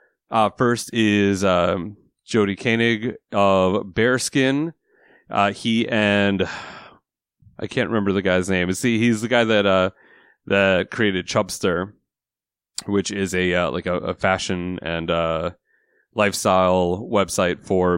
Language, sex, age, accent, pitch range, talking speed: English, male, 30-49, American, 95-115 Hz, 130 wpm